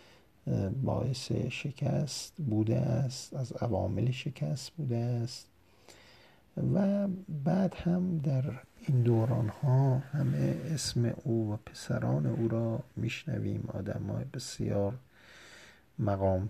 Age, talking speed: 50-69, 100 wpm